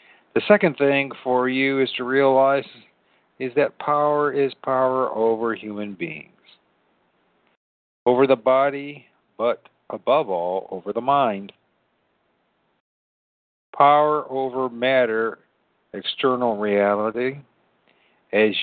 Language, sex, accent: English, male, American